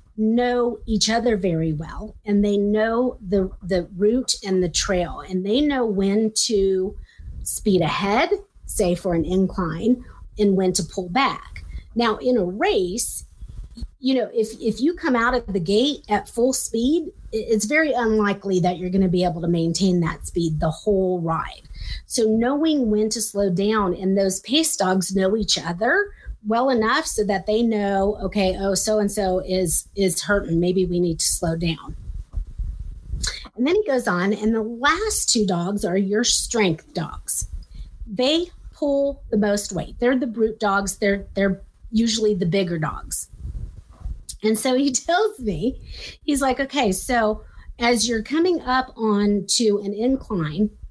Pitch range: 185-235 Hz